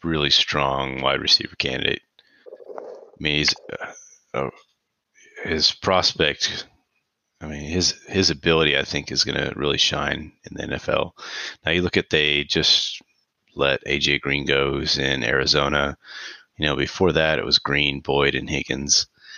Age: 30-49